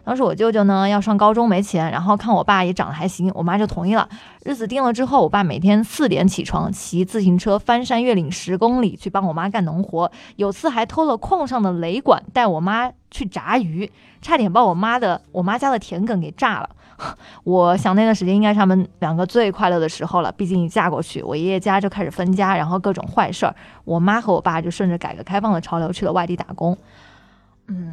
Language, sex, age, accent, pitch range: Chinese, female, 20-39, native, 180-225 Hz